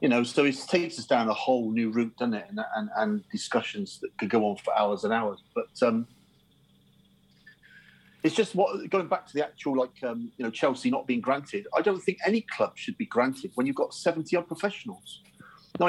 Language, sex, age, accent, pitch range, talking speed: English, male, 40-59, British, 120-195 Hz, 220 wpm